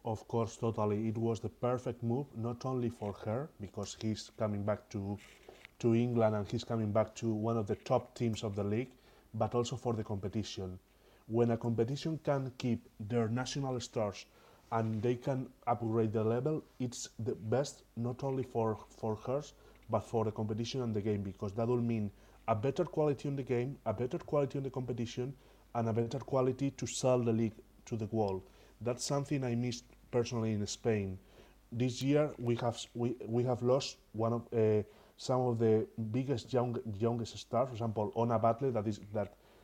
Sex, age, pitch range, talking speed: male, 30-49, 110-125 Hz, 190 wpm